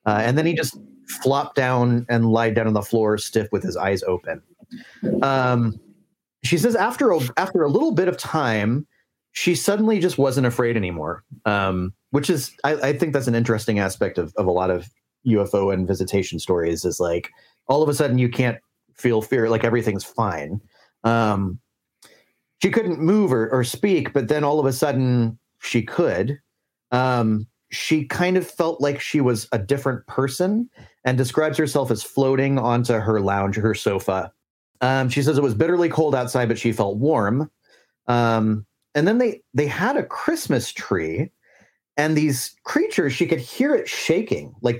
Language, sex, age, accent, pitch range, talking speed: English, male, 30-49, American, 110-150 Hz, 180 wpm